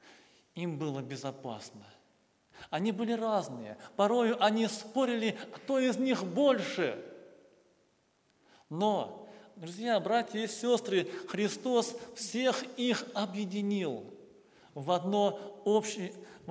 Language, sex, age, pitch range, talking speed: Russian, male, 40-59, 140-200 Hz, 90 wpm